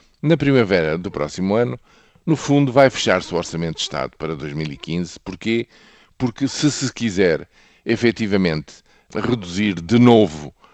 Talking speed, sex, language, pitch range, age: 135 wpm, male, Portuguese, 85-115 Hz, 50-69